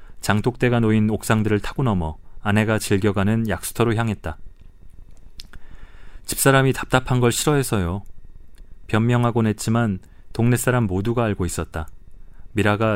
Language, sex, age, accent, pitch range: Korean, male, 30-49, native, 85-115 Hz